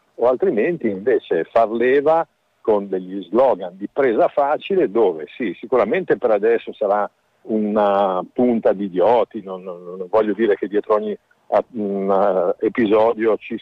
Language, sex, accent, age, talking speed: Italian, male, native, 50-69, 135 wpm